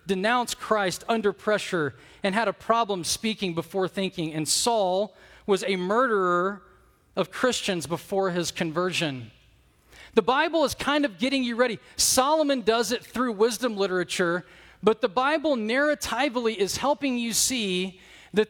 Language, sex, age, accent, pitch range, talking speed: English, male, 40-59, American, 180-240 Hz, 145 wpm